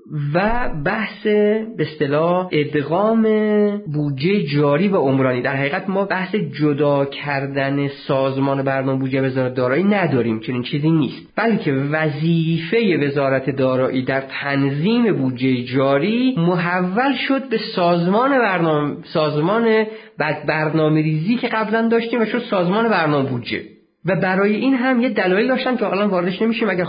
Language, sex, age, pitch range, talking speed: Persian, male, 50-69, 140-200 Hz, 140 wpm